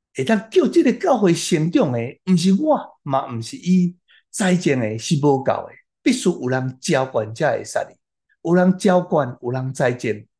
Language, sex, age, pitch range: Chinese, male, 60-79, 110-160 Hz